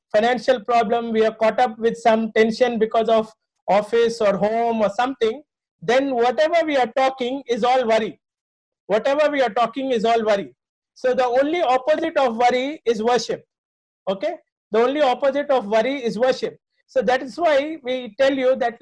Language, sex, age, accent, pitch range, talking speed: English, male, 50-69, Indian, 230-275 Hz, 175 wpm